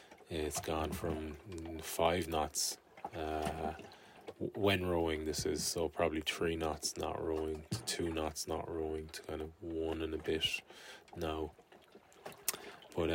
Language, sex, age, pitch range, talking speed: English, male, 20-39, 80-95 Hz, 140 wpm